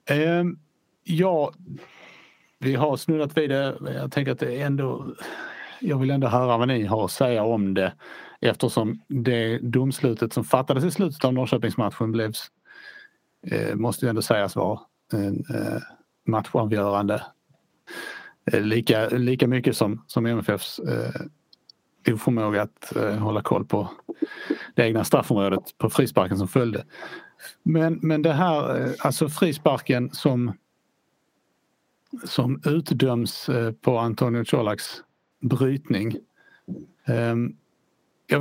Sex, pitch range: male, 120-160 Hz